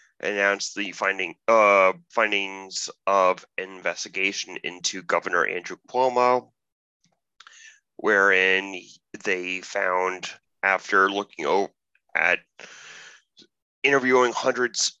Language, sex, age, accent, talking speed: English, male, 30-49, American, 75 wpm